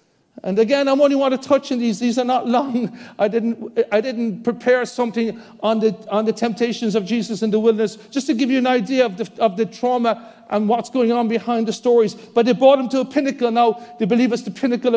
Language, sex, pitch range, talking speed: English, male, 230-285 Hz, 240 wpm